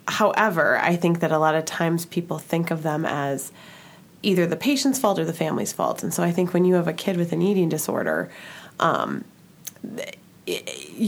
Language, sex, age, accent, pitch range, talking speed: English, female, 20-39, American, 170-195 Hz, 195 wpm